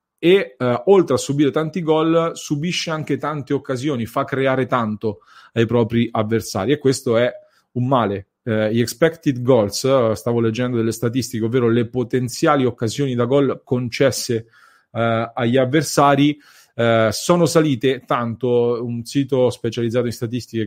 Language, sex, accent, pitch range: English, male, Italian, 115-140 Hz